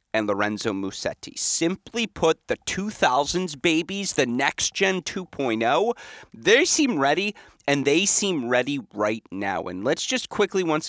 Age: 30-49